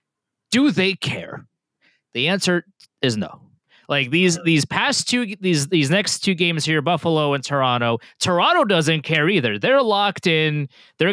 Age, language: 20-39, English